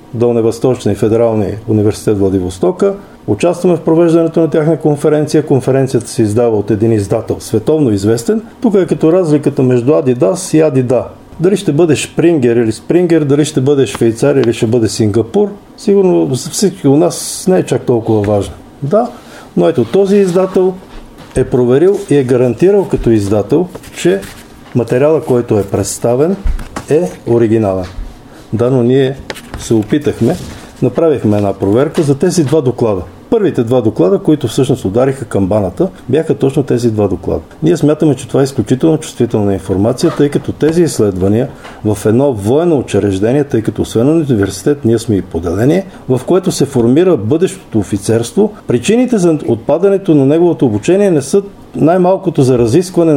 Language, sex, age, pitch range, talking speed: Bulgarian, male, 50-69, 110-165 Hz, 155 wpm